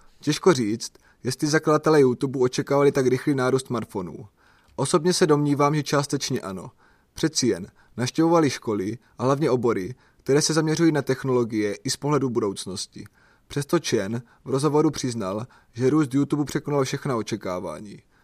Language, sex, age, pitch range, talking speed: Czech, male, 30-49, 125-150 Hz, 140 wpm